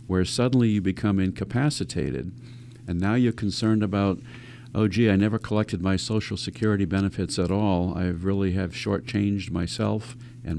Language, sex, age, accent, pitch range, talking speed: English, male, 50-69, American, 95-120 Hz, 155 wpm